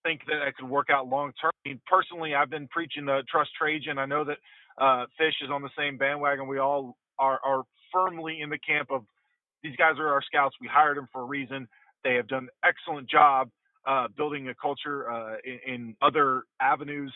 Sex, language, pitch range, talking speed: male, English, 140-180 Hz, 215 wpm